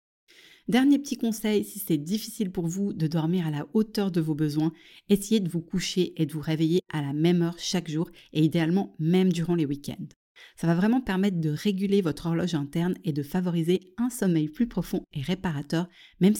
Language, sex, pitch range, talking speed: French, female, 160-200 Hz, 200 wpm